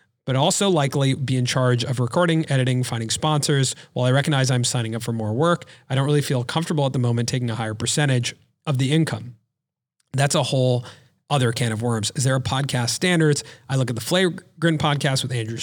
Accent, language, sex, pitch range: American, English, male, 120-155 Hz